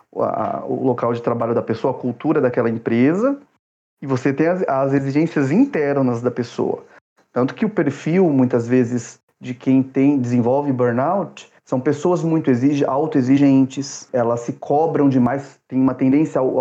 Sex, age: male, 30-49